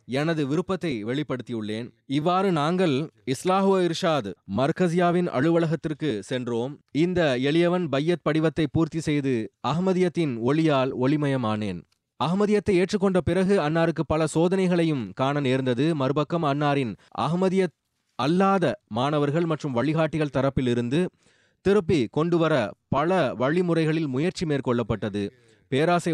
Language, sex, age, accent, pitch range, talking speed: Tamil, male, 30-49, native, 125-170 Hz, 95 wpm